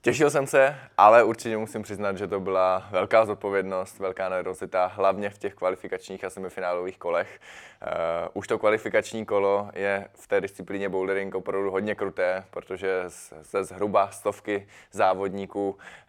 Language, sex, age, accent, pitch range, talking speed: Czech, male, 20-39, native, 90-100 Hz, 140 wpm